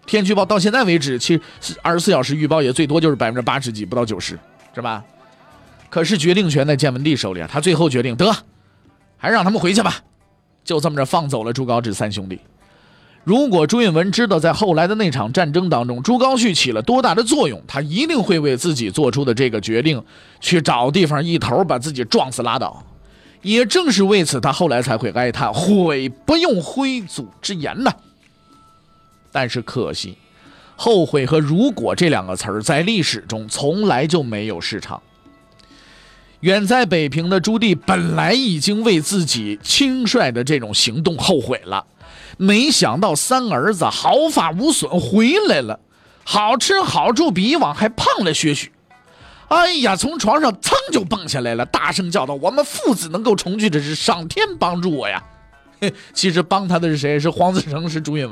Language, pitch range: Chinese, 125-210 Hz